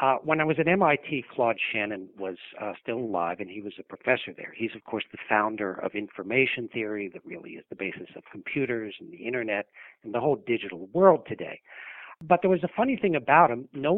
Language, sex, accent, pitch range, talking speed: English, male, American, 115-160 Hz, 220 wpm